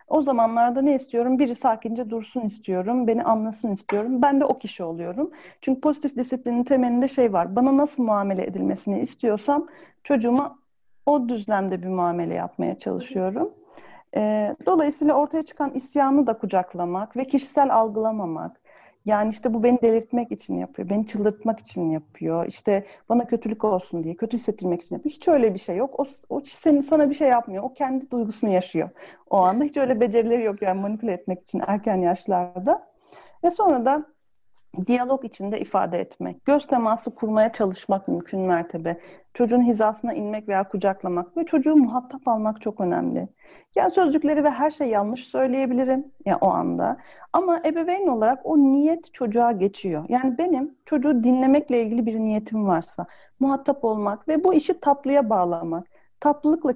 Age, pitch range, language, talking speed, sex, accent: 40-59, 205-285 Hz, Turkish, 155 wpm, female, native